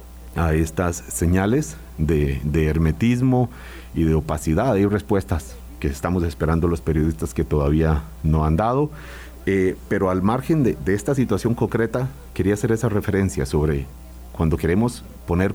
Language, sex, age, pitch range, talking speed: Spanish, male, 40-59, 75-105 Hz, 145 wpm